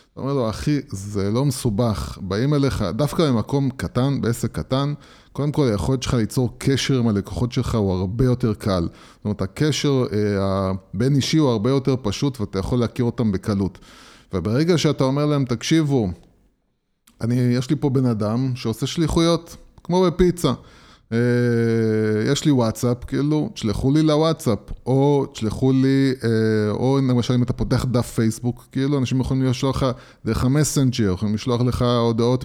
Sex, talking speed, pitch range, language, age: male, 160 wpm, 110-140 Hz, Hebrew, 20-39